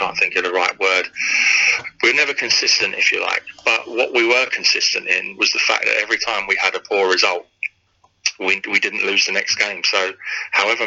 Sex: male